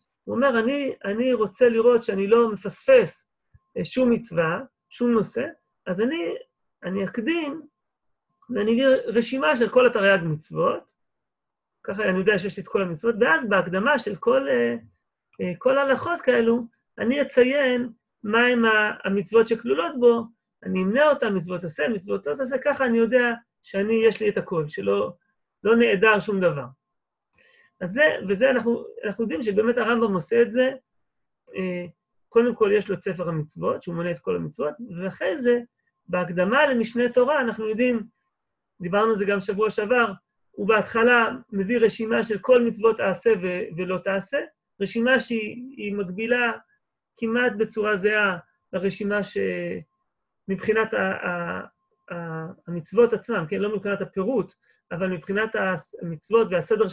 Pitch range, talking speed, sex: 190-245 Hz, 140 wpm, male